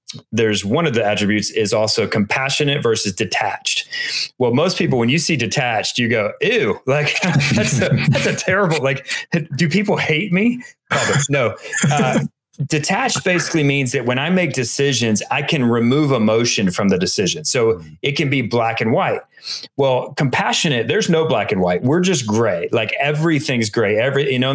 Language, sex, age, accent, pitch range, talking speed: English, male, 30-49, American, 115-160 Hz, 170 wpm